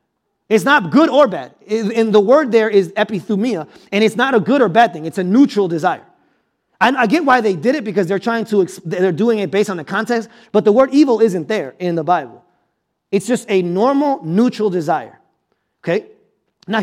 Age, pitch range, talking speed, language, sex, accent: 30-49, 190-245 Hz, 205 wpm, English, male, American